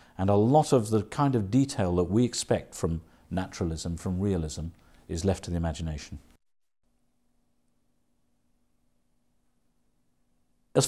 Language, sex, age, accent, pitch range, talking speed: English, male, 50-69, British, 90-120 Hz, 115 wpm